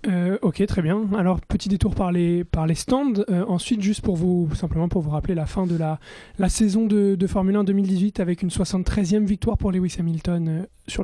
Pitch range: 175-215 Hz